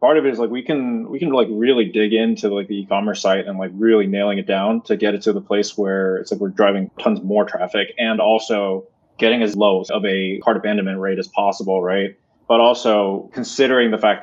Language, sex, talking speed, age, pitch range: English, male, 230 wpm, 20-39, 100-130 Hz